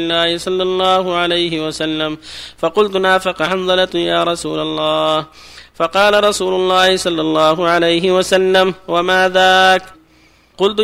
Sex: male